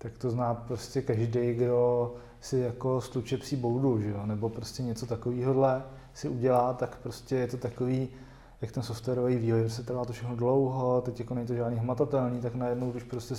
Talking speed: 195 wpm